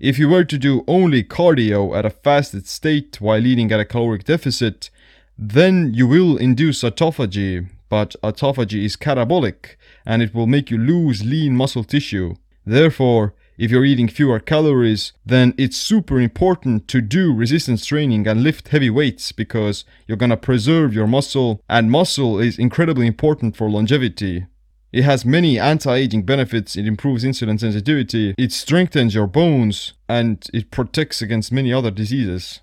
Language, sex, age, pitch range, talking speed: English, male, 30-49, 110-140 Hz, 160 wpm